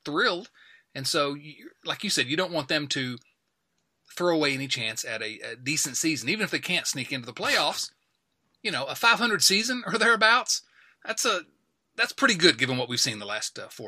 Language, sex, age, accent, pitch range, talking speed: English, male, 30-49, American, 135-190 Hz, 210 wpm